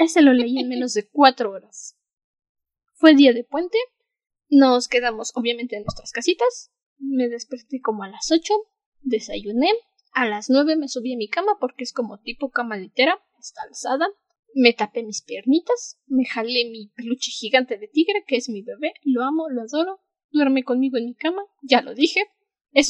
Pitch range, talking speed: 255-345 Hz, 180 wpm